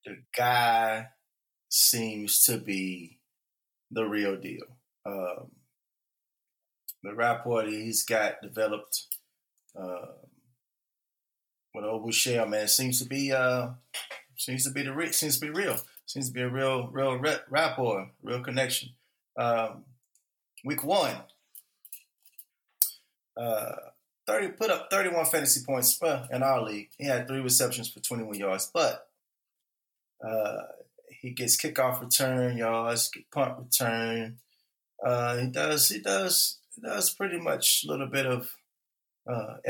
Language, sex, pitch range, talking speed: English, male, 110-135 Hz, 135 wpm